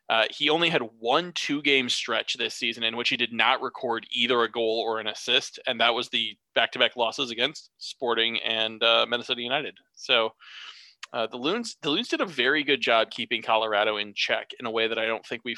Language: English